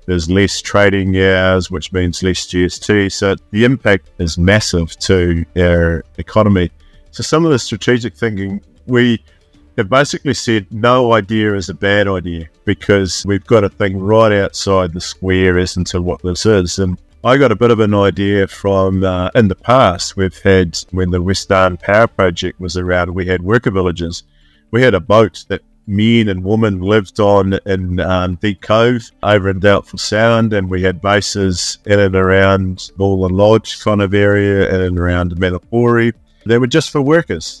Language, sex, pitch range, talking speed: English, male, 90-110 Hz, 180 wpm